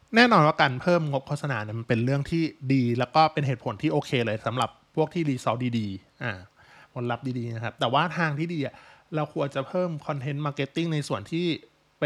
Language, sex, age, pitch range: Thai, male, 20-39, 120-155 Hz